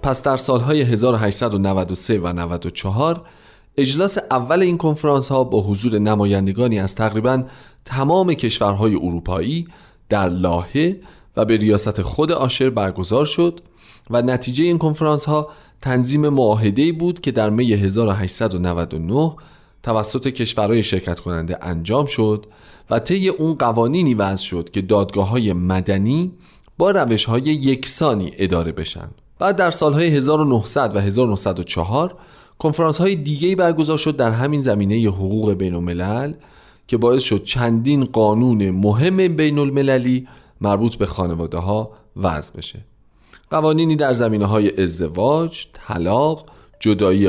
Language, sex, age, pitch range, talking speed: Persian, male, 40-59, 100-150 Hz, 120 wpm